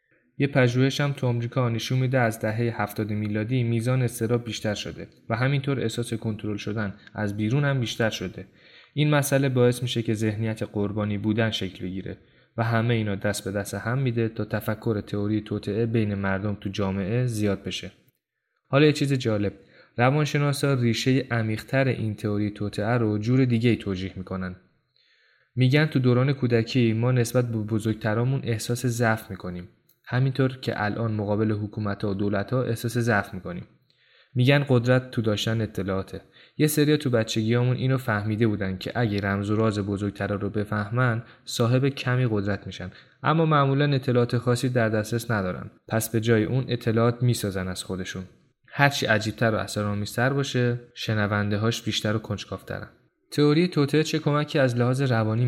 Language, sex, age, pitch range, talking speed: Persian, male, 20-39, 105-125 Hz, 155 wpm